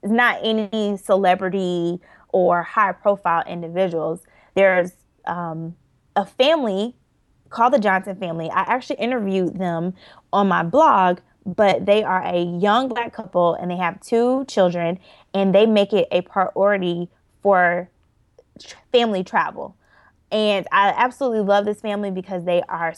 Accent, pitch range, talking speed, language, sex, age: American, 180-215 Hz, 140 wpm, English, female, 20-39